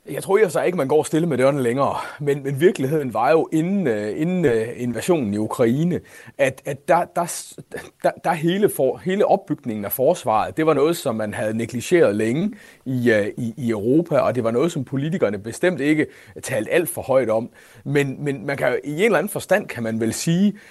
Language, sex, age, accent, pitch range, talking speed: Danish, male, 30-49, native, 120-180 Hz, 195 wpm